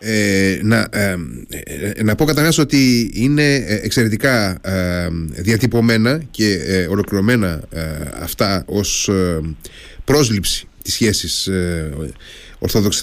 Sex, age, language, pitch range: male, 30-49, Greek, 95-145 Hz